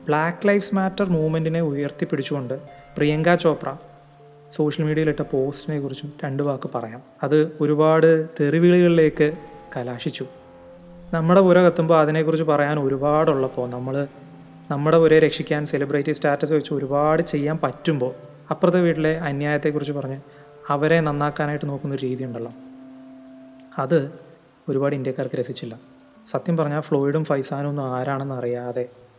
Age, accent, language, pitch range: 30-49, native, Malayalam, 135-160 Hz